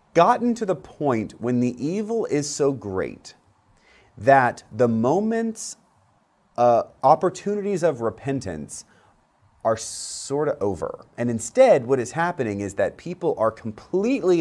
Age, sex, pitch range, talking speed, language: 30-49, male, 110-170 Hz, 130 wpm, English